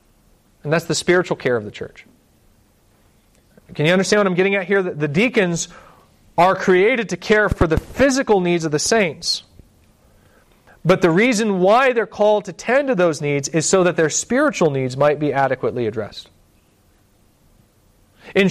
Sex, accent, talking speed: male, American, 165 wpm